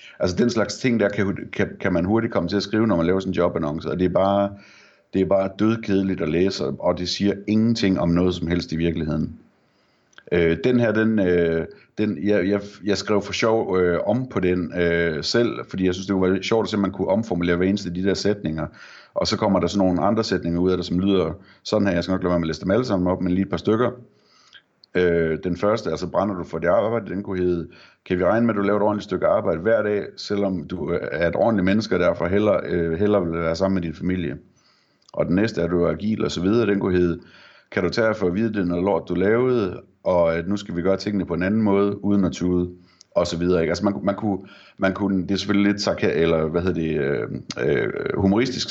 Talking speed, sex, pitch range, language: 255 wpm, male, 85-100 Hz, Danish